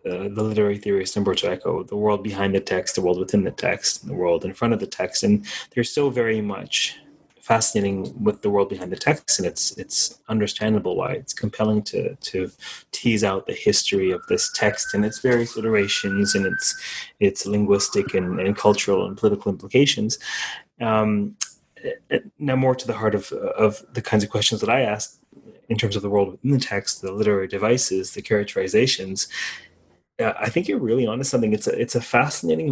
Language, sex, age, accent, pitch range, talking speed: English, male, 20-39, Canadian, 100-125 Hz, 200 wpm